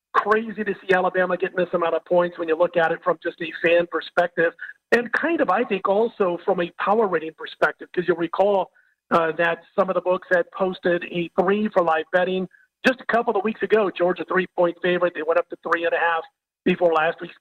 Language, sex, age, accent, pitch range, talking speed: English, male, 40-59, American, 175-215 Hz, 230 wpm